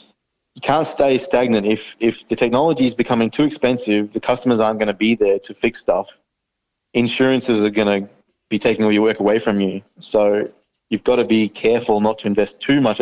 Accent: Australian